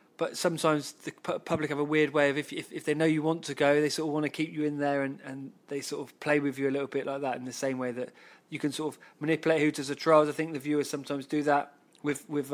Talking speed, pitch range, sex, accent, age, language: 300 wpm, 140-160 Hz, male, British, 20-39, English